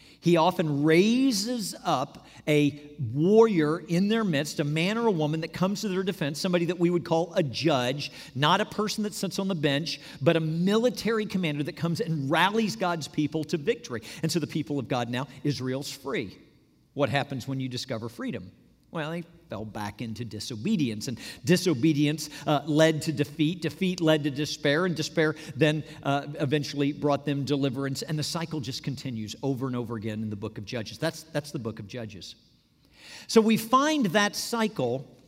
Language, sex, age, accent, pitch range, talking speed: English, male, 50-69, American, 135-180 Hz, 185 wpm